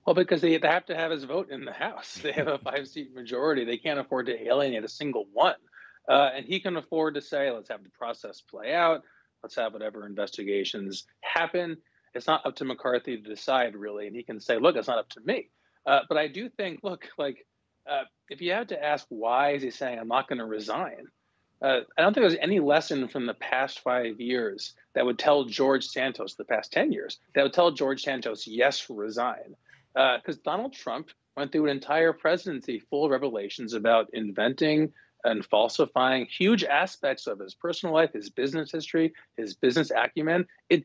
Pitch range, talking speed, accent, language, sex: 125-170 Hz, 200 wpm, American, English, male